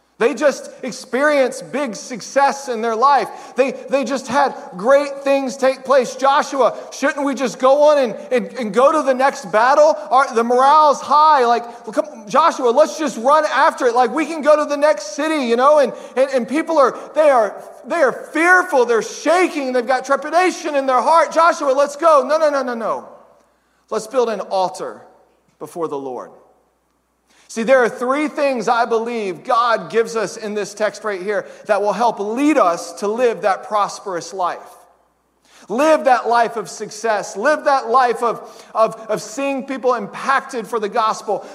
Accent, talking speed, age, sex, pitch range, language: American, 185 wpm, 40-59, male, 230-275 Hz, English